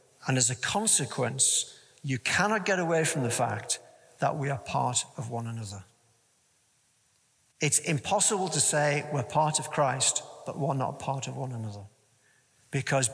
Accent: British